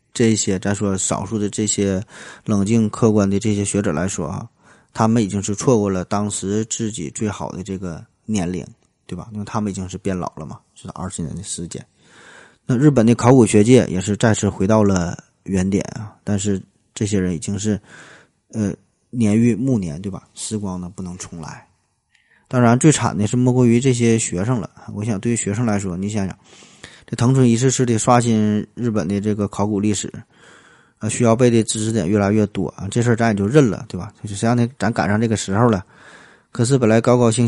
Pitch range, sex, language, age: 100-115 Hz, male, Chinese, 20-39